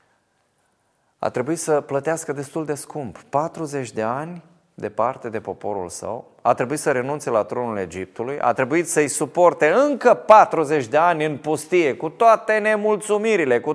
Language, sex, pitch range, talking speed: Romanian, male, 125-195 Hz, 155 wpm